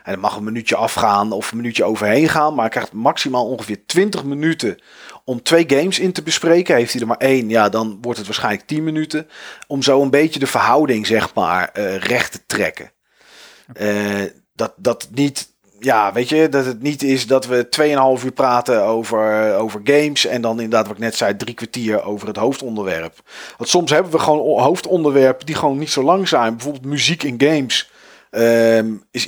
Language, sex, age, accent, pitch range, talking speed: Dutch, male, 40-59, Dutch, 115-145 Hz, 195 wpm